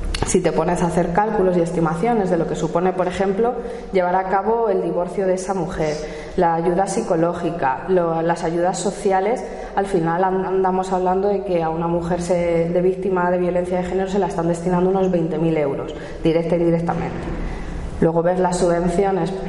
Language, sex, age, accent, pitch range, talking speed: Spanish, female, 20-39, Spanish, 165-195 Hz, 175 wpm